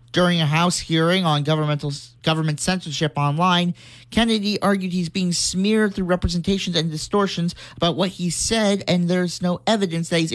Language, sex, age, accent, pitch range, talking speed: English, male, 40-59, American, 150-180 Hz, 160 wpm